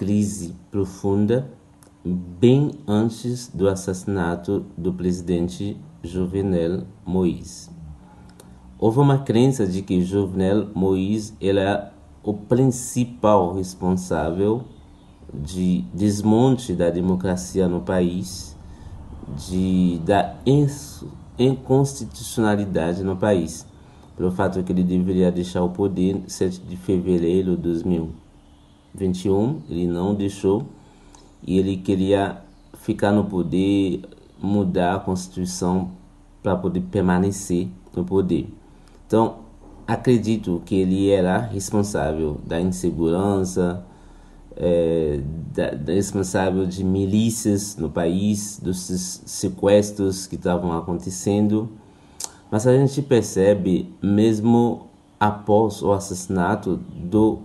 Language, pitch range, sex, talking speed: Portuguese, 90-105 Hz, male, 100 wpm